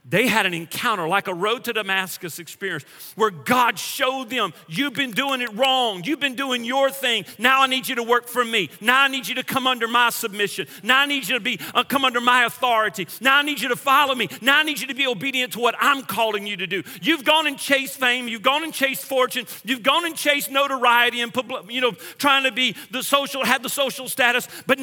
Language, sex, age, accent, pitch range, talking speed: English, male, 40-59, American, 230-280 Hz, 245 wpm